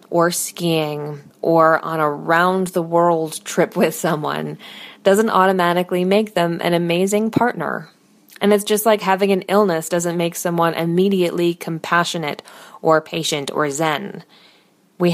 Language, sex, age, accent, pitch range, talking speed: English, female, 20-39, American, 160-200 Hz, 130 wpm